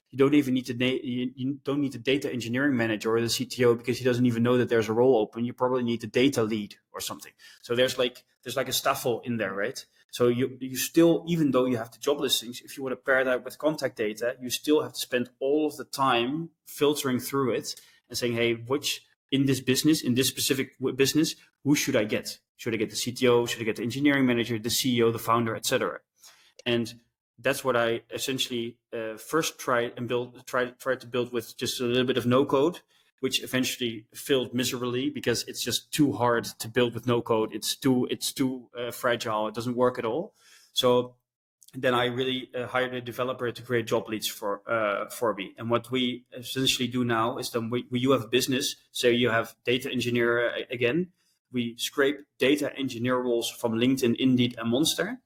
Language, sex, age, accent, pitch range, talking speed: English, male, 20-39, Dutch, 120-130 Hz, 215 wpm